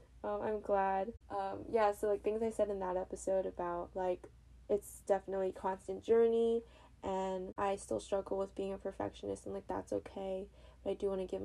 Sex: female